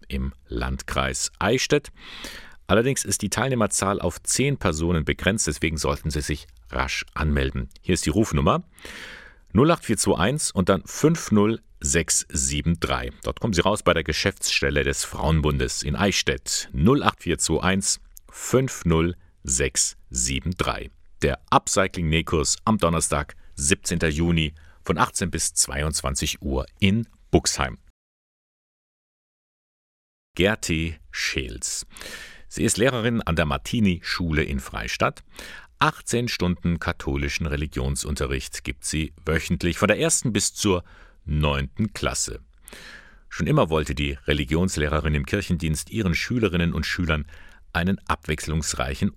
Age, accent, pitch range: 50-69, German, 75-95 Hz